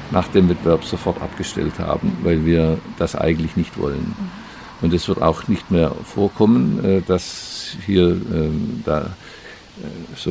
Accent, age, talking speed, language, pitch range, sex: German, 50-69, 140 wpm, German, 80-95 Hz, male